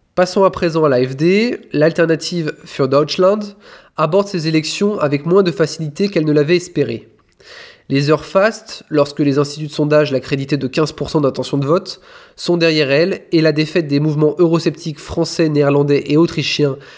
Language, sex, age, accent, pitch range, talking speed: French, male, 20-39, French, 145-175 Hz, 165 wpm